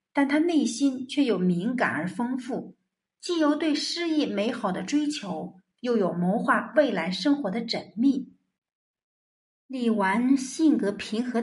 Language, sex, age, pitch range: Chinese, female, 50-69, 190-295 Hz